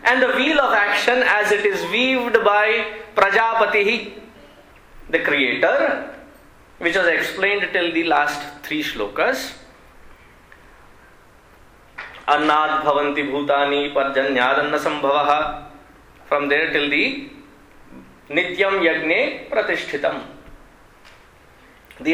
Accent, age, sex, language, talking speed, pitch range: Indian, 20-39, male, English, 90 wpm, 150-220 Hz